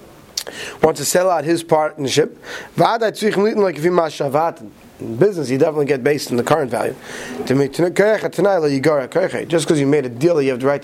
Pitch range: 135-170 Hz